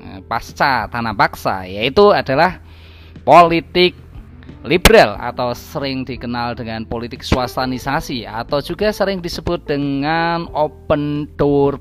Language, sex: Indonesian, male